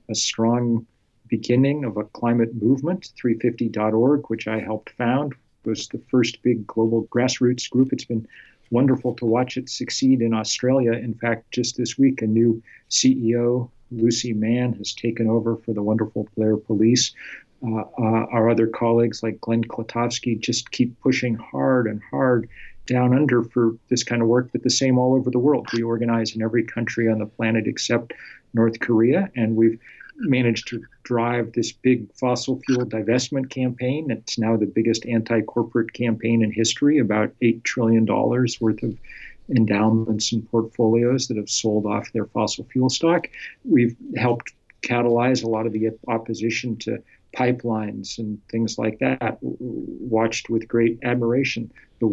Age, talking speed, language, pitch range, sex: 40-59, 160 wpm, English, 110-125 Hz, male